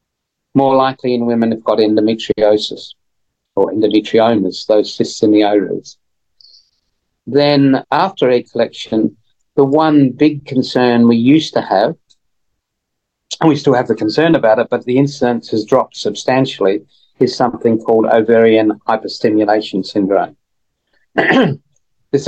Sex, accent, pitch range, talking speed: male, British, 110-135 Hz, 125 wpm